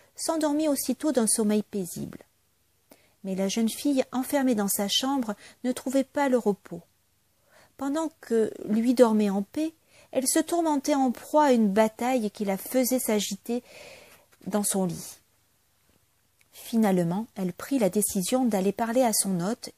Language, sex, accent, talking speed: French, female, French, 150 wpm